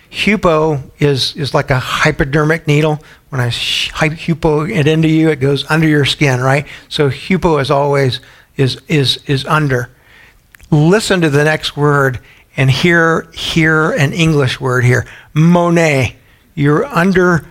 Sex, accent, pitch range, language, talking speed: male, American, 130-160 Hz, English, 155 wpm